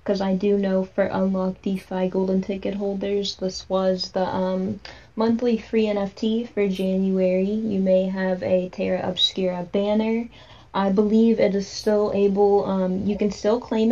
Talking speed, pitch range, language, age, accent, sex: 160 wpm, 185-210 Hz, English, 20-39, American, female